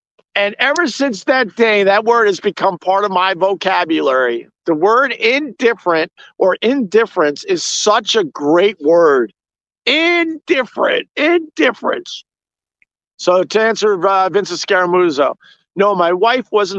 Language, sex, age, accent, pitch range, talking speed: English, male, 50-69, American, 160-255 Hz, 125 wpm